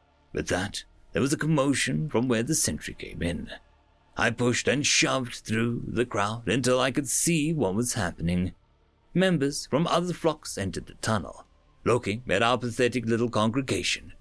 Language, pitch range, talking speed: English, 105-160 Hz, 165 wpm